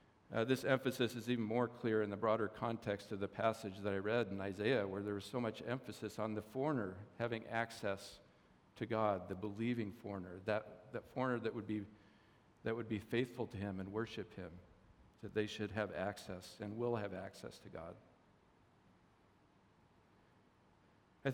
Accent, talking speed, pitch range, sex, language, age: American, 170 wpm, 100-120 Hz, male, English, 50-69